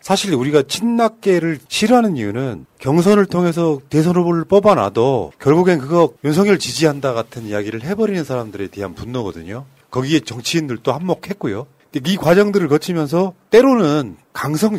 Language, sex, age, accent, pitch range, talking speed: English, male, 40-59, Korean, 130-185 Hz, 115 wpm